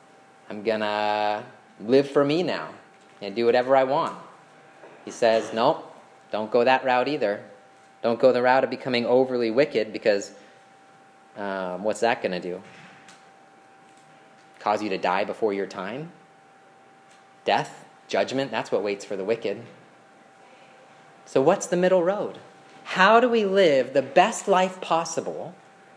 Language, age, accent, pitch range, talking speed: English, 30-49, American, 110-170 Hz, 145 wpm